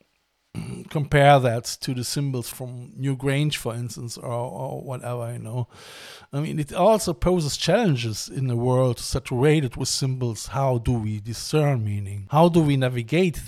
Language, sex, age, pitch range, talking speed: English, male, 50-69, 120-150 Hz, 160 wpm